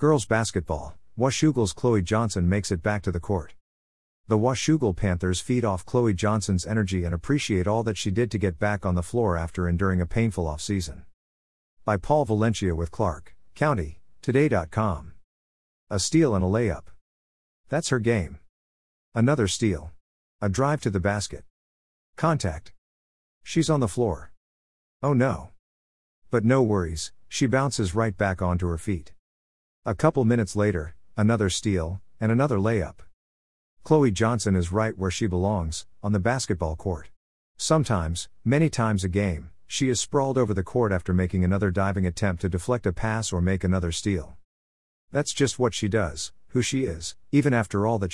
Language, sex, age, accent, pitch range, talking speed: English, male, 50-69, American, 85-115 Hz, 165 wpm